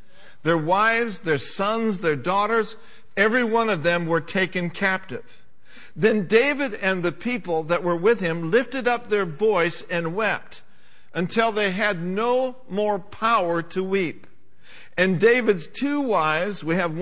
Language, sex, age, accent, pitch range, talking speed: English, male, 60-79, American, 175-220 Hz, 150 wpm